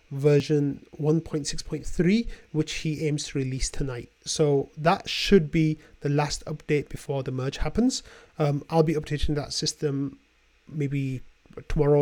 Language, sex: English, male